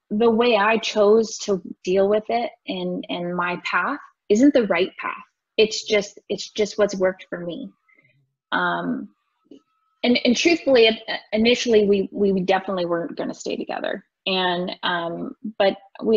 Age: 20-39